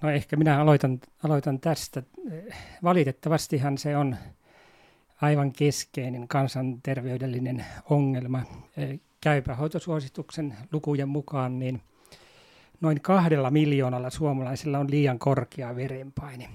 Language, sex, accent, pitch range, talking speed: Finnish, male, native, 130-155 Hz, 90 wpm